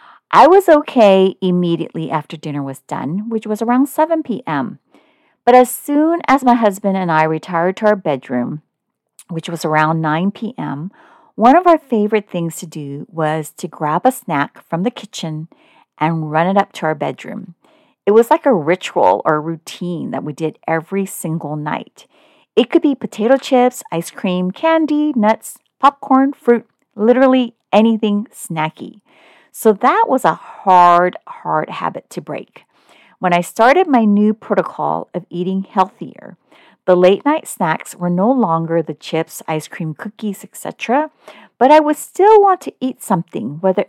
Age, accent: 40-59, American